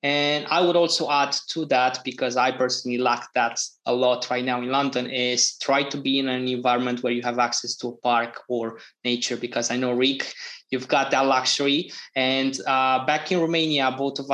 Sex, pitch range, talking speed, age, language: male, 125-140 Hz, 205 wpm, 20-39, English